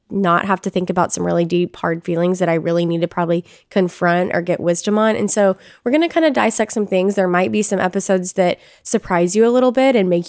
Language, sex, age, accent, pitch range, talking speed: English, female, 20-39, American, 175-210 Hz, 255 wpm